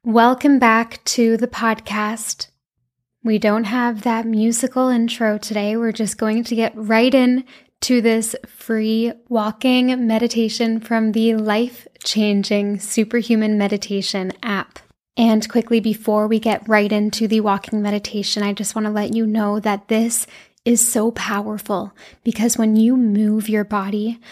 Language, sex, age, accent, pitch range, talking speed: English, female, 10-29, American, 210-230 Hz, 145 wpm